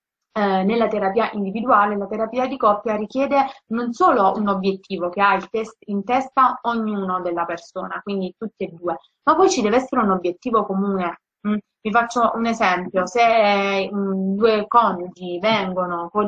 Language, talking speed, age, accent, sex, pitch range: Italian, 155 wpm, 30-49, native, female, 190-225 Hz